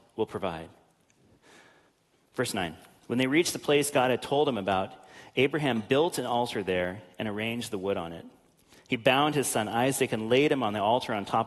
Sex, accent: male, American